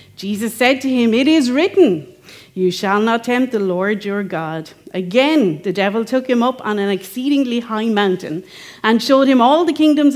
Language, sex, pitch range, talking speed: English, female, 185-245 Hz, 190 wpm